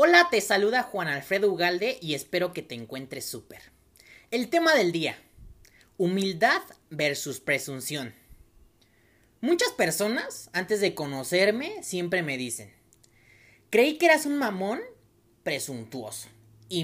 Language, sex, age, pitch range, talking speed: Spanish, male, 30-49, 135-215 Hz, 120 wpm